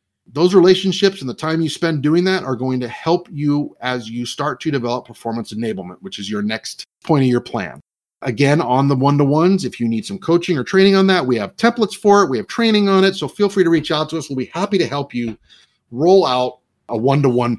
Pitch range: 130-190 Hz